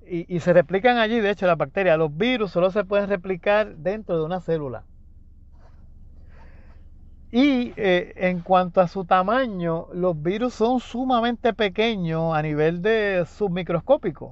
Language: Spanish